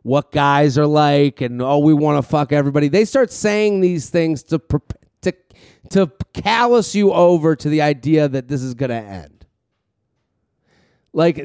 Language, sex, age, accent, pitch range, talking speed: English, male, 30-49, American, 150-195 Hz, 170 wpm